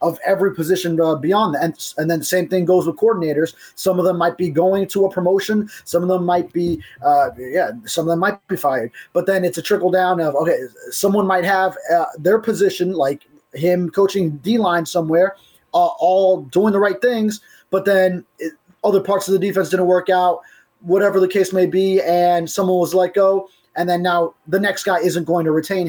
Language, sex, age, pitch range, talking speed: English, male, 20-39, 160-190 Hz, 220 wpm